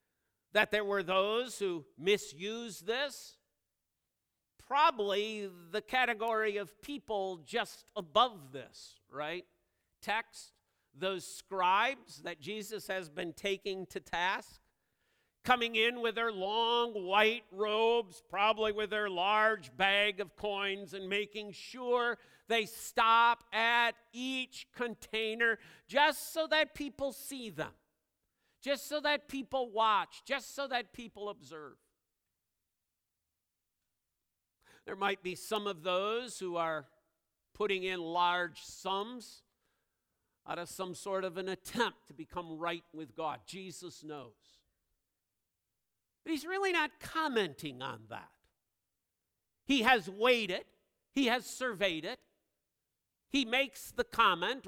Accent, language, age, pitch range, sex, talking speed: American, English, 50-69, 160-235 Hz, male, 120 wpm